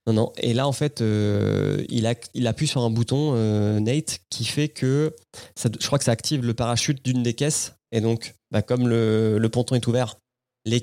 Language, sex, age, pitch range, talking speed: French, male, 20-39, 110-140 Hz, 220 wpm